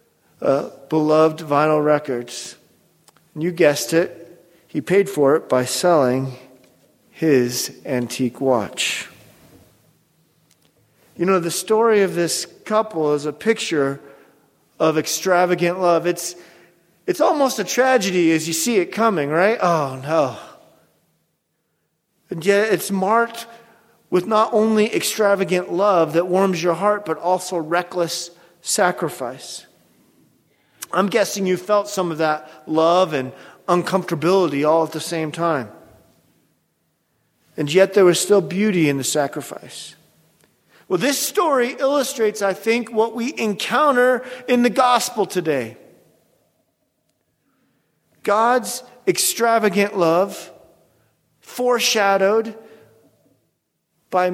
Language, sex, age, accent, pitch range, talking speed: English, male, 40-59, American, 160-215 Hz, 115 wpm